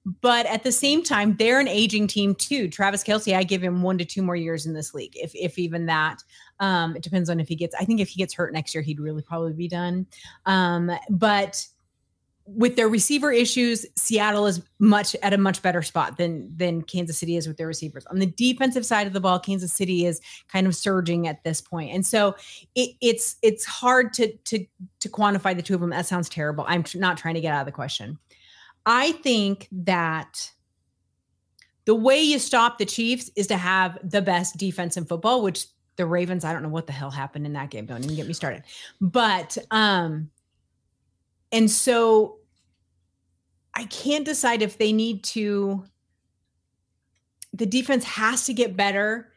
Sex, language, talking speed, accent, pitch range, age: female, English, 195 wpm, American, 165-215 Hz, 30-49